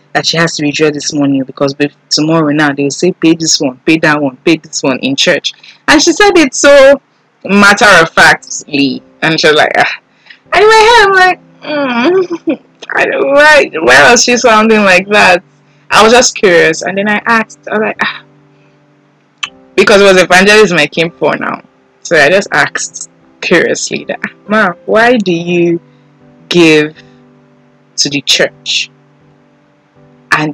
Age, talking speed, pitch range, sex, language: 20-39, 165 wpm, 145-200 Hz, female, English